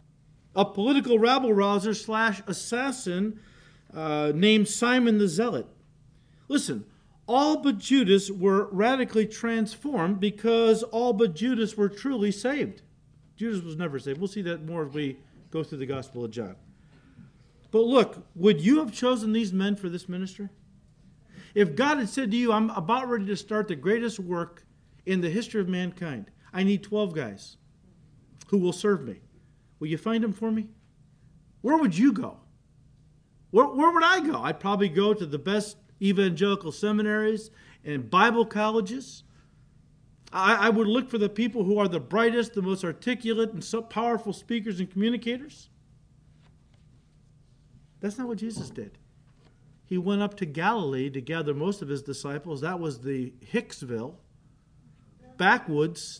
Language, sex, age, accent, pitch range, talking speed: English, male, 50-69, American, 160-225 Hz, 155 wpm